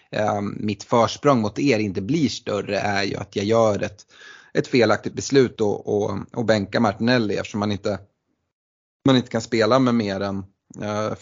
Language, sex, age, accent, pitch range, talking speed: Swedish, male, 30-49, native, 100-115 Hz, 170 wpm